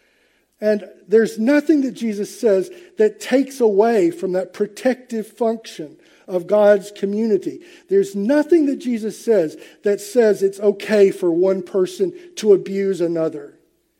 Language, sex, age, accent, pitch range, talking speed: English, male, 50-69, American, 165-255 Hz, 135 wpm